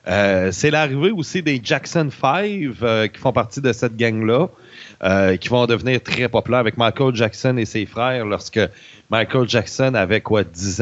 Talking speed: 175 wpm